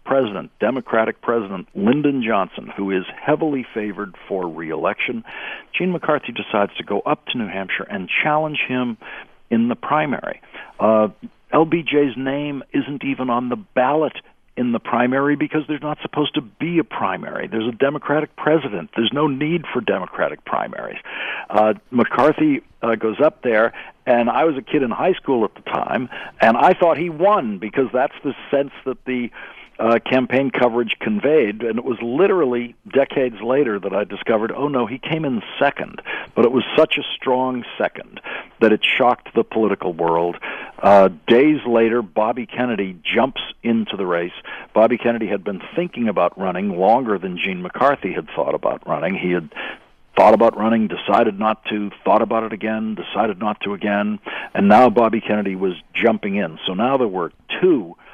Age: 60-79